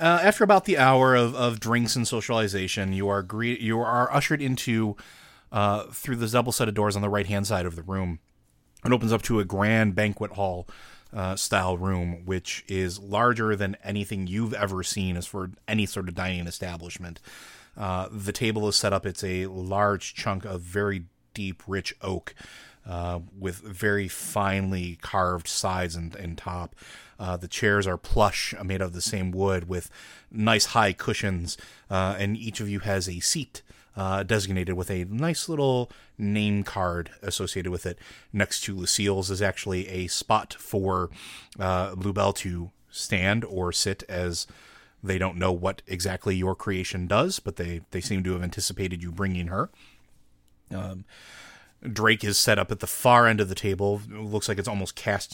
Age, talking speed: 30-49, 180 wpm